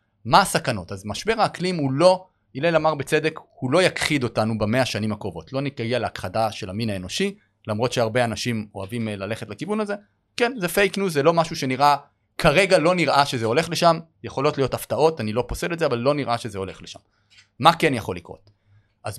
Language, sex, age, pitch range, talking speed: Hebrew, male, 30-49, 105-150 Hz, 195 wpm